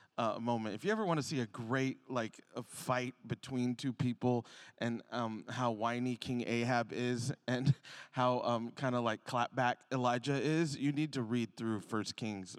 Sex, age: male, 20-39